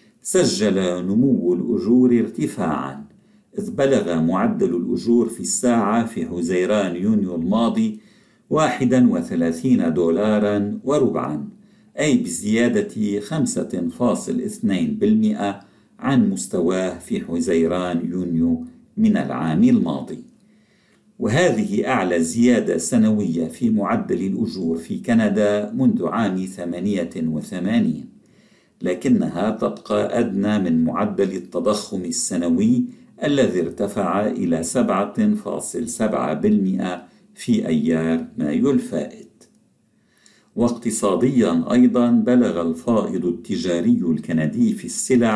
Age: 50-69